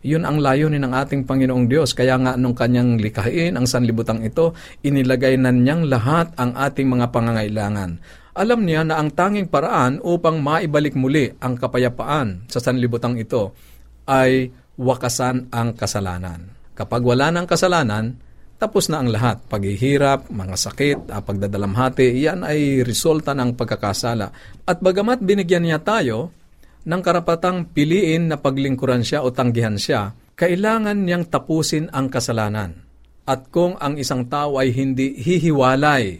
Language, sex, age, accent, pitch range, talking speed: Filipino, male, 50-69, native, 115-150 Hz, 140 wpm